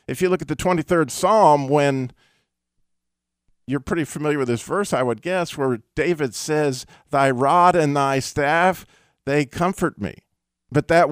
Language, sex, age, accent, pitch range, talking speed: English, male, 50-69, American, 125-180 Hz, 160 wpm